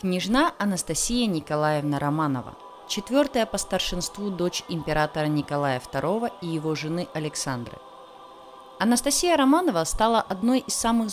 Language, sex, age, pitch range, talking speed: Russian, female, 20-39, 150-230 Hz, 115 wpm